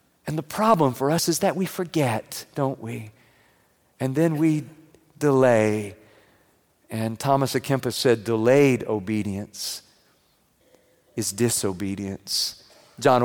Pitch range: 130-185 Hz